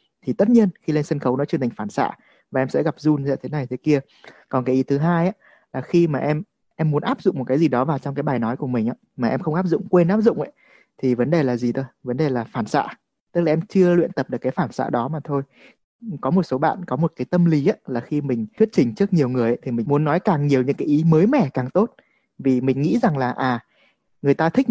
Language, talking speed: Vietnamese, 300 wpm